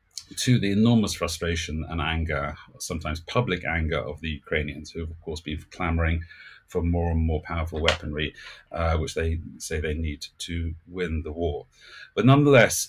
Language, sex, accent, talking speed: English, male, British, 170 wpm